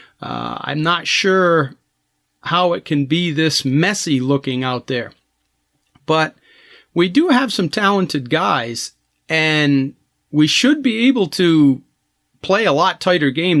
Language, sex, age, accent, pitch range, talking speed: English, male, 40-59, American, 140-170 Hz, 135 wpm